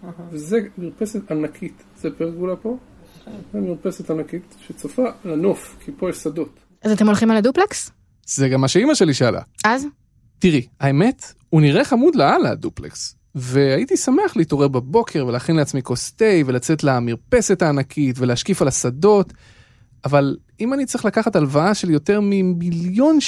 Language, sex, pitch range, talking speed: Hebrew, male, 155-235 Hz, 145 wpm